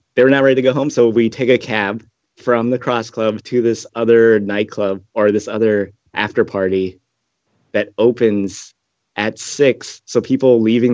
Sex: male